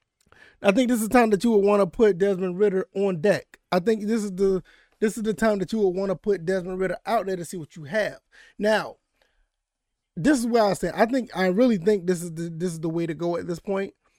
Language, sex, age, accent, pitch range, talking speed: English, male, 20-39, American, 180-220 Hz, 265 wpm